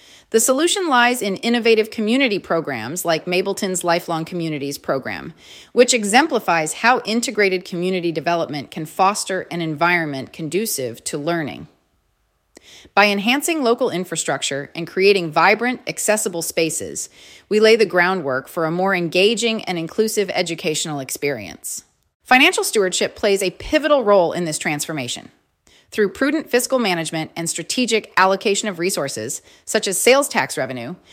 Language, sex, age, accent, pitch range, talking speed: English, female, 30-49, American, 165-230 Hz, 135 wpm